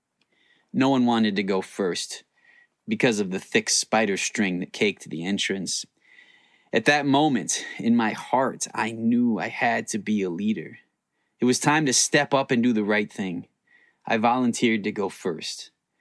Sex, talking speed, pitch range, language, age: male, 170 wpm, 110-135 Hz, English, 20-39